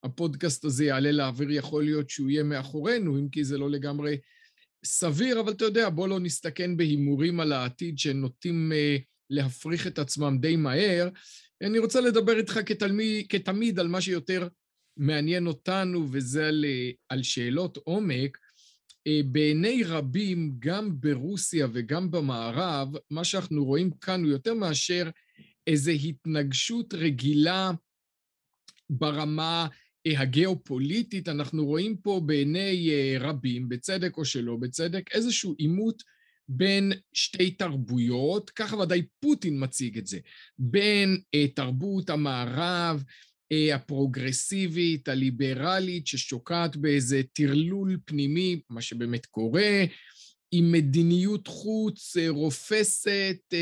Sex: male